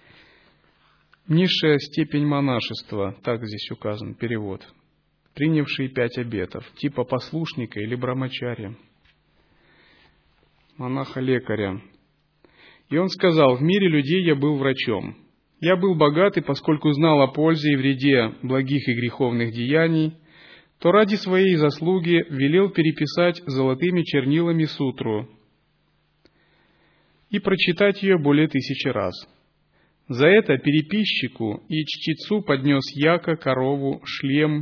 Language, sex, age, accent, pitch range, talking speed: Russian, male, 30-49, native, 130-170 Hz, 105 wpm